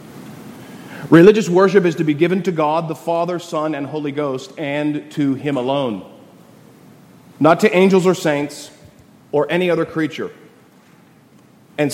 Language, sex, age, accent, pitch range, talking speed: English, male, 30-49, American, 150-200 Hz, 140 wpm